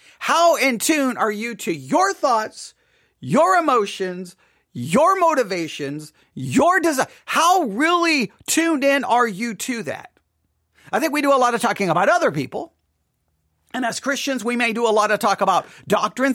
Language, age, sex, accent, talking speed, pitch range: English, 40-59, male, American, 165 wpm, 185-270 Hz